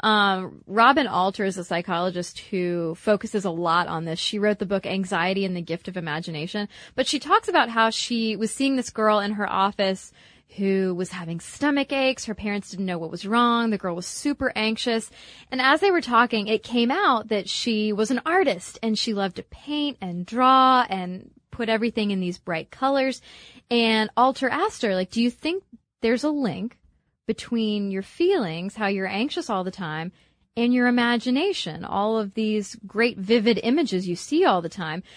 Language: English